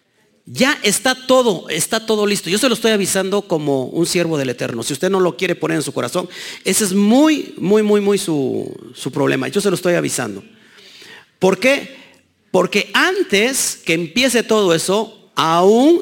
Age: 40-59